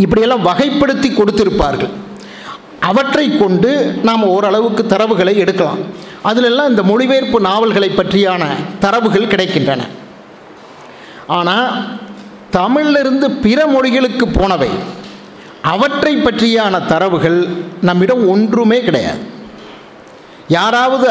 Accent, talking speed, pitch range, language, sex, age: native, 80 wpm, 185-225 Hz, Tamil, male, 50-69